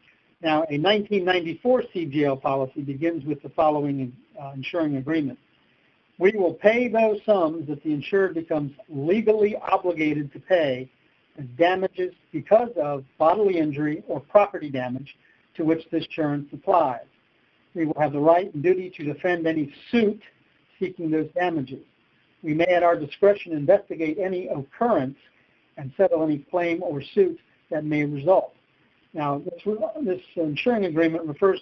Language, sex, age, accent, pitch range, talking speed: English, male, 60-79, American, 150-190 Hz, 145 wpm